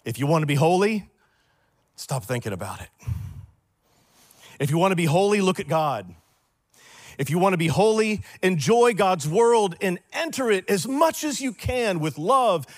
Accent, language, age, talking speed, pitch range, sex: American, English, 40-59, 180 wpm, 110-180 Hz, male